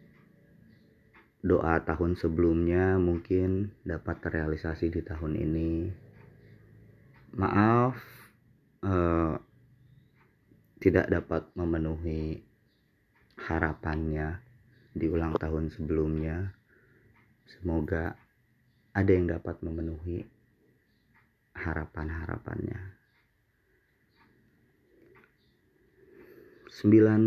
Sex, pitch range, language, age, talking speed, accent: male, 80-115 Hz, Indonesian, 30-49, 55 wpm, native